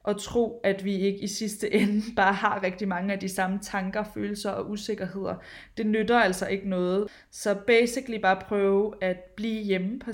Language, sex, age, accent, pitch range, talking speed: Danish, female, 20-39, native, 190-215 Hz, 190 wpm